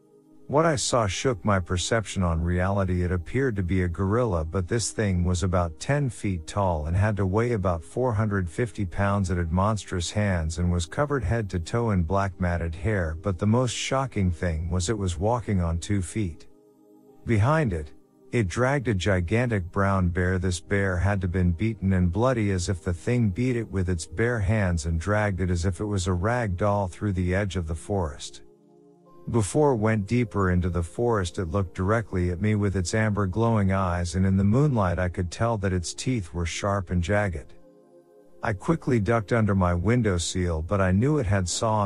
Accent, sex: American, male